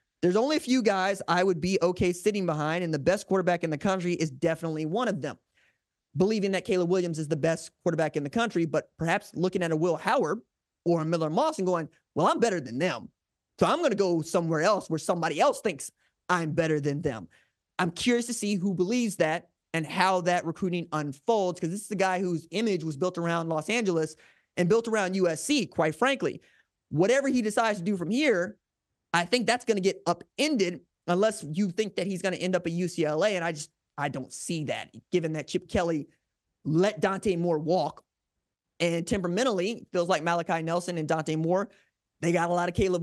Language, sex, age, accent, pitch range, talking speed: English, male, 20-39, American, 165-210 Hz, 210 wpm